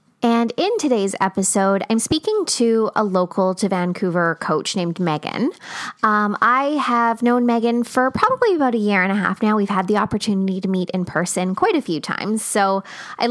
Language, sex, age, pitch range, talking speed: English, female, 20-39, 180-225 Hz, 190 wpm